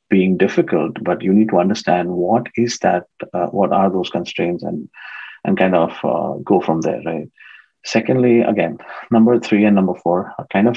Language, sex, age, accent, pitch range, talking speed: English, male, 30-49, Indian, 90-115 Hz, 190 wpm